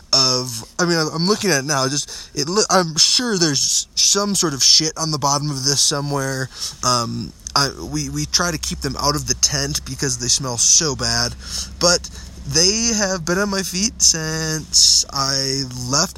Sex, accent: male, American